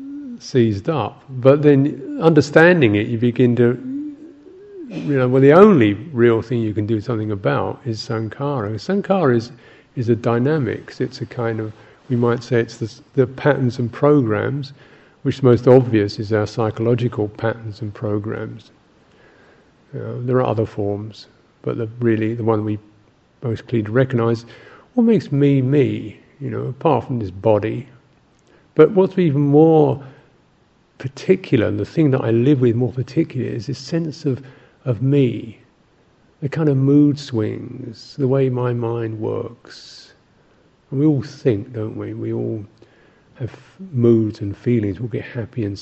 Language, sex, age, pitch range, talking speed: English, male, 50-69, 110-145 Hz, 160 wpm